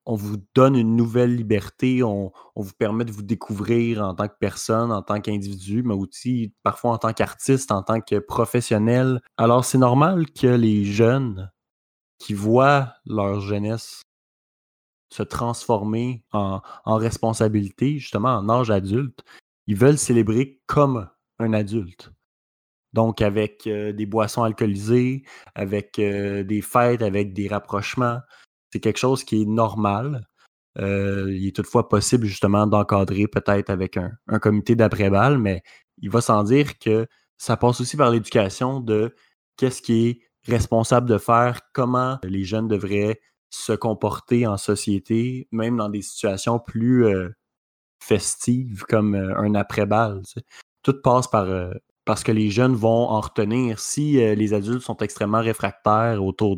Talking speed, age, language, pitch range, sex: 150 wpm, 20-39, French, 105-120 Hz, male